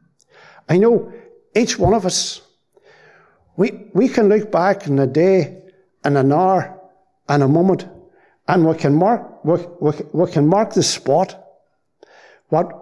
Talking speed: 150 wpm